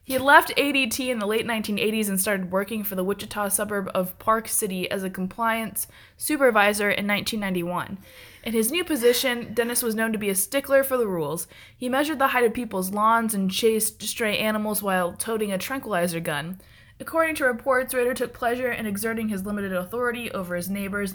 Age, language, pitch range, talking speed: 20-39, English, 195-245 Hz, 195 wpm